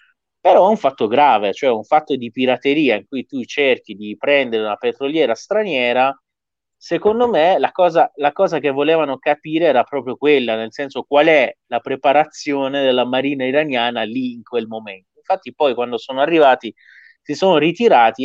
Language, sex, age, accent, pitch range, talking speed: Italian, male, 30-49, native, 120-155 Hz, 170 wpm